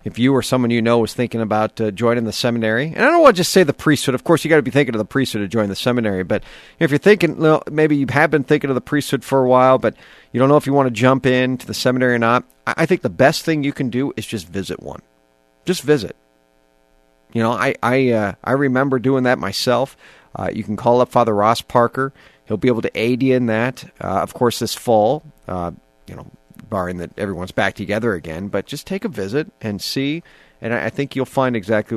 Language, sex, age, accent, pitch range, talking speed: English, male, 40-59, American, 90-130 Hz, 250 wpm